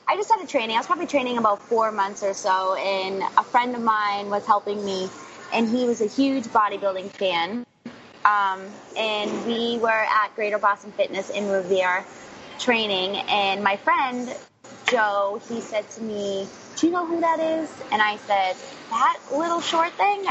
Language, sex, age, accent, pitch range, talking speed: English, female, 20-39, American, 205-270 Hz, 180 wpm